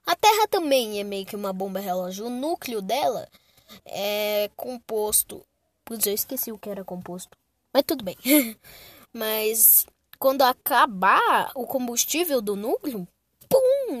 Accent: Brazilian